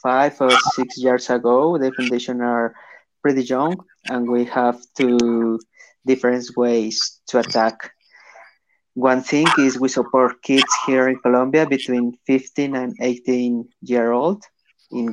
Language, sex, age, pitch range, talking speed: English, male, 30-49, 115-125 Hz, 135 wpm